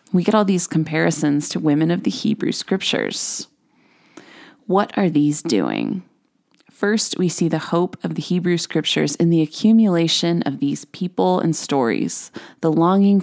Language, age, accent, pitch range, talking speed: English, 20-39, American, 155-210 Hz, 155 wpm